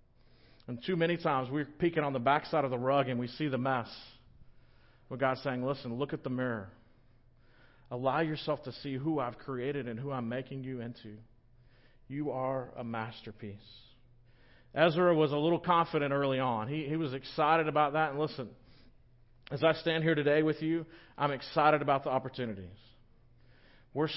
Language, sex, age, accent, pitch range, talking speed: English, male, 40-59, American, 125-155 Hz, 175 wpm